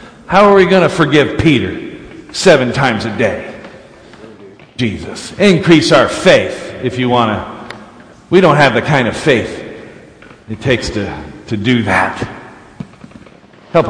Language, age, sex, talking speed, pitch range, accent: English, 50-69, male, 145 wpm, 105-160 Hz, American